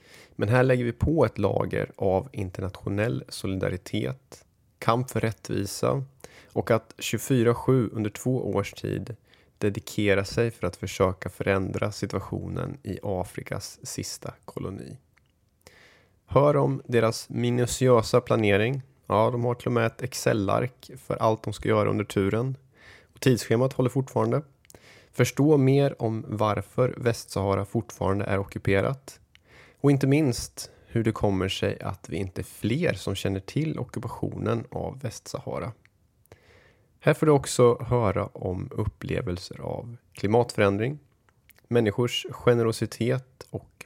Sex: male